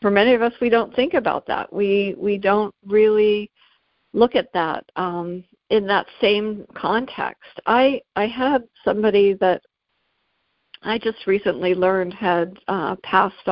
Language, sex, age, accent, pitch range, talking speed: English, female, 60-79, American, 185-235 Hz, 145 wpm